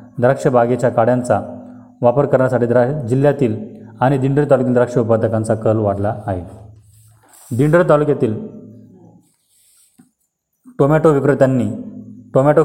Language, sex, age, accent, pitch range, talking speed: Marathi, male, 30-49, native, 110-130 Hz, 95 wpm